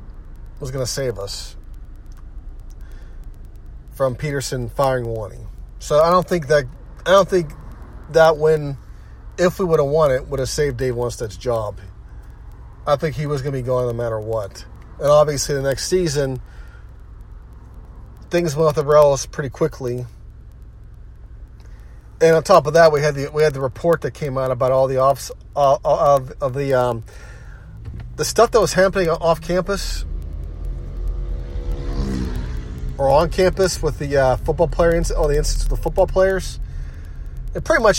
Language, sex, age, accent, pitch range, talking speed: English, male, 40-59, American, 110-160 Hz, 160 wpm